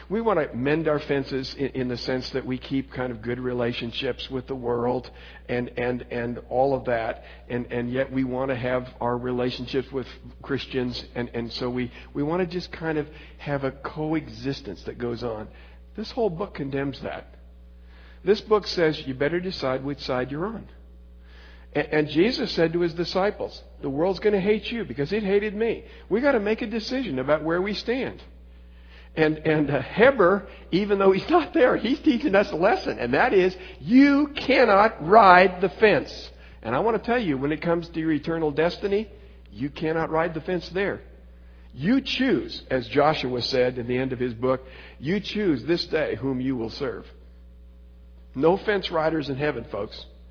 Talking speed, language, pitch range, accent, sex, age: 190 wpm, English, 115-170 Hz, American, male, 50-69